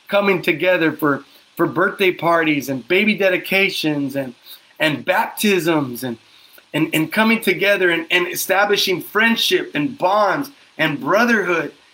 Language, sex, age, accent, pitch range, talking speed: English, male, 30-49, American, 165-225 Hz, 125 wpm